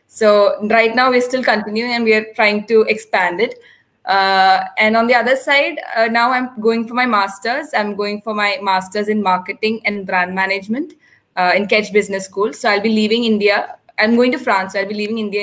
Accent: Indian